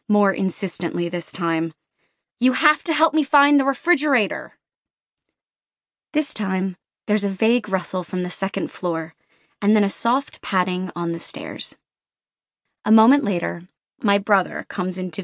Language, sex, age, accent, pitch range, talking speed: English, female, 20-39, American, 180-235 Hz, 145 wpm